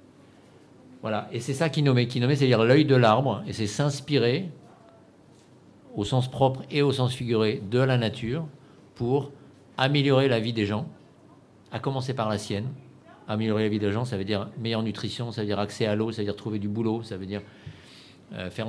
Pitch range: 105-130 Hz